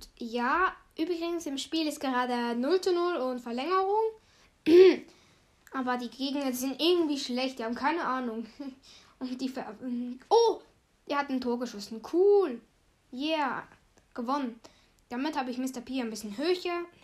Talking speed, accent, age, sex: 145 wpm, German, 10-29, female